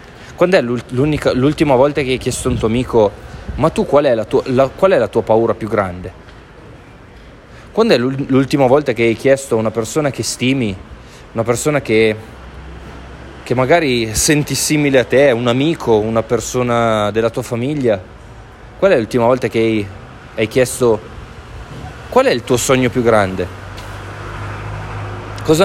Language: Italian